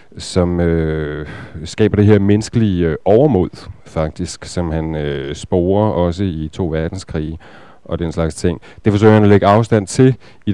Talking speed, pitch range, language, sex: 165 wpm, 85-115 Hz, Danish, male